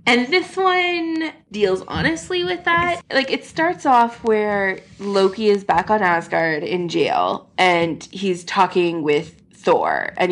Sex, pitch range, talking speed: female, 165-220 Hz, 145 wpm